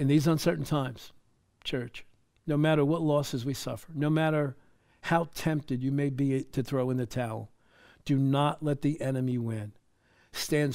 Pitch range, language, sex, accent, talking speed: 125-155 Hz, English, male, American, 165 wpm